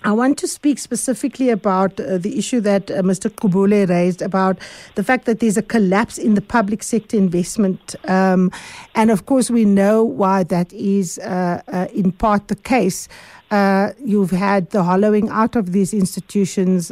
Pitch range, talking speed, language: 190-220 Hz, 175 wpm, English